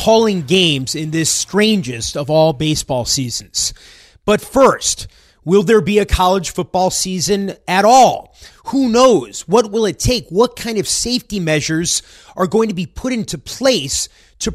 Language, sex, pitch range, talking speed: English, male, 145-200 Hz, 160 wpm